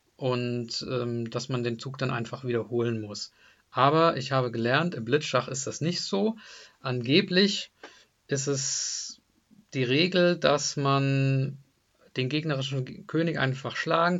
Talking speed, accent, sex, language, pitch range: 135 wpm, German, male, German, 125-150 Hz